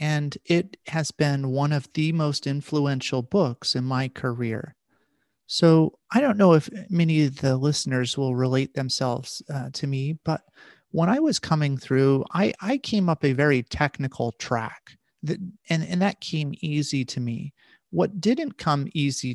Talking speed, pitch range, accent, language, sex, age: 165 wpm, 130-170 Hz, American, English, male, 30-49